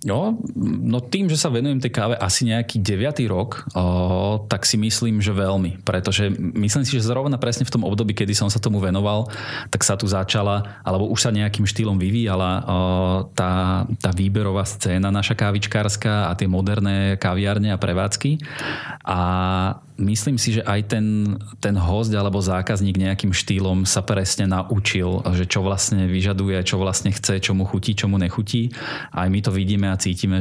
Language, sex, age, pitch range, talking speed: Slovak, male, 20-39, 95-110 Hz, 180 wpm